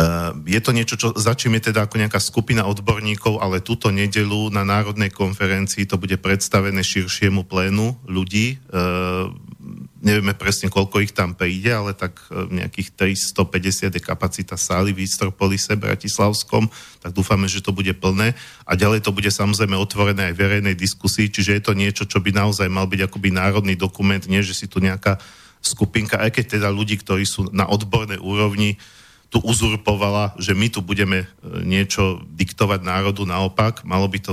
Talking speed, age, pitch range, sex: 165 wpm, 40-59, 95-105 Hz, male